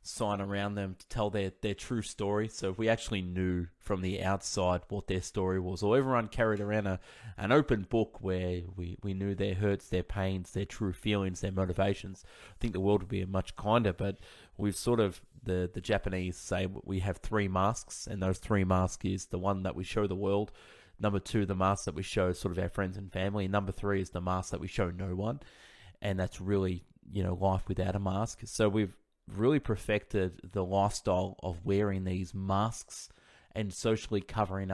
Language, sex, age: English, male, 20-39